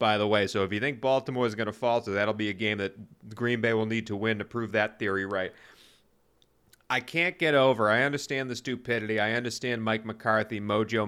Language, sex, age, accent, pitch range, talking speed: English, male, 30-49, American, 105-130 Hz, 225 wpm